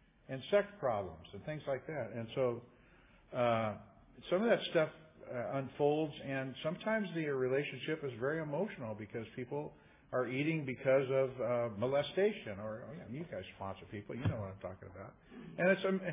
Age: 50-69